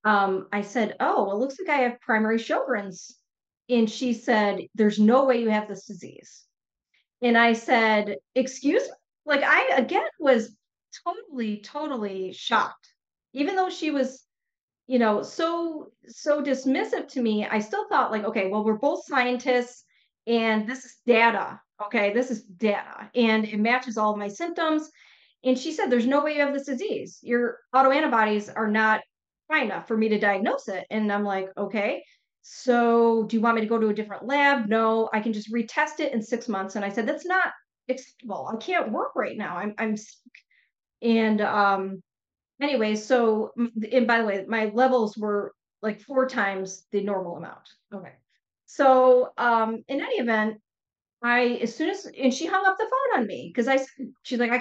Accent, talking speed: American, 180 wpm